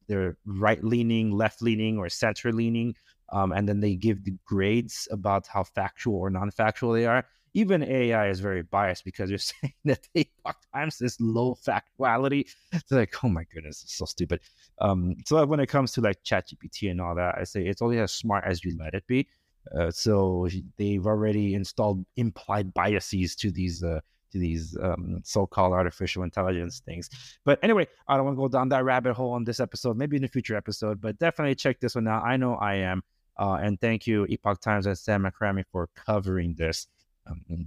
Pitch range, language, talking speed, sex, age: 90-120 Hz, English, 195 wpm, male, 30-49